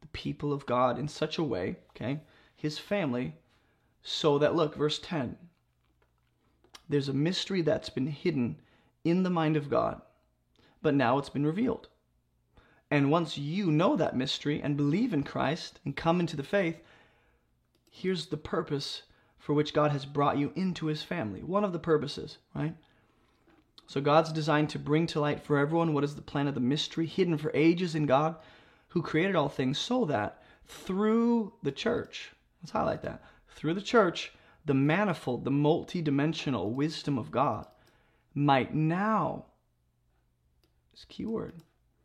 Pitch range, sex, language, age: 135-160 Hz, male, English, 30-49